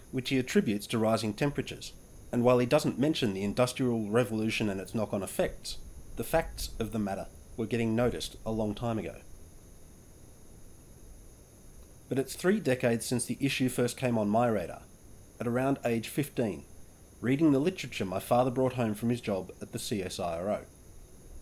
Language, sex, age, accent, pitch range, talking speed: English, male, 30-49, Australian, 100-130 Hz, 165 wpm